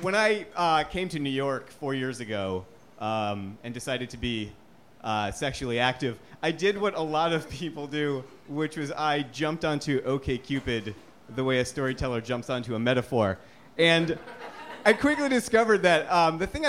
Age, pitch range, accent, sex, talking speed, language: 30-49, 120-180 Hz, American, male, 175 wpm, English